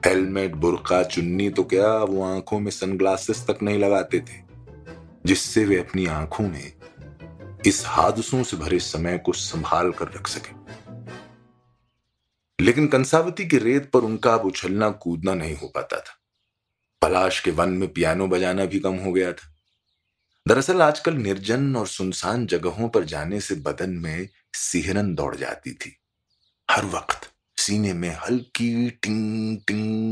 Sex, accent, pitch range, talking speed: male, native, 85-110 Hz, 150 wpm